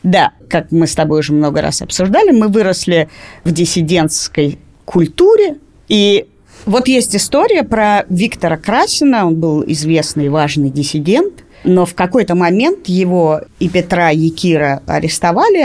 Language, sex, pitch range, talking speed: Russian, female, 165-250 Hz, 140 wpm